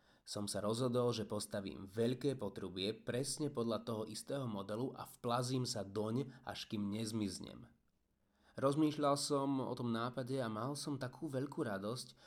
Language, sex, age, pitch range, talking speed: Slovak, male, 30-49, 105-130 Hz, 145 wpm